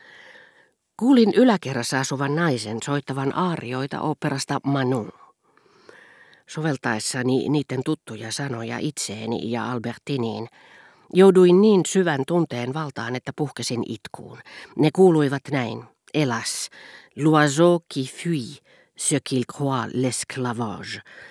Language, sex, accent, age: Finnish, female, native, 50-69